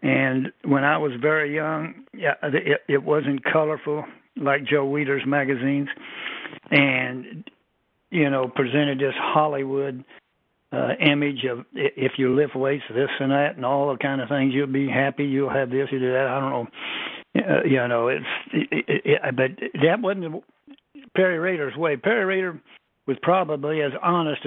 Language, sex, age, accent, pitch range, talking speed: English, male, 60-79, American, 140-170 Hz, 155 wpm